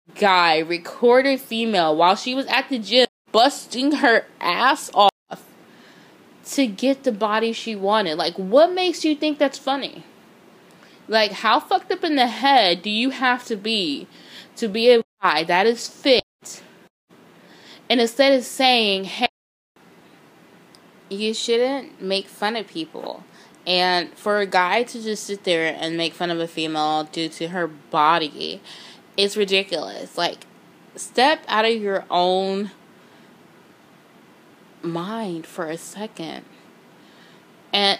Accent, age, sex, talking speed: American, 10-29, female, 135 wpm